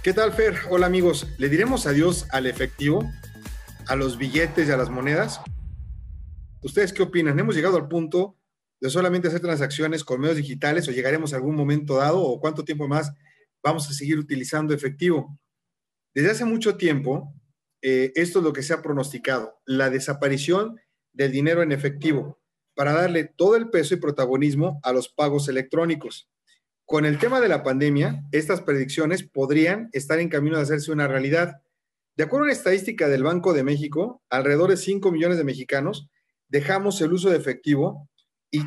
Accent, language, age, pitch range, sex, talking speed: Mexican, Spanish, 40-59, 140-170 Hz, male, 175 wpm